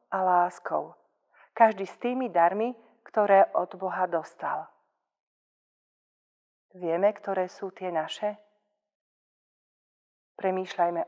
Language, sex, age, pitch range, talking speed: Slovak, female, 40-59, 165-200 Hz, 85 wpm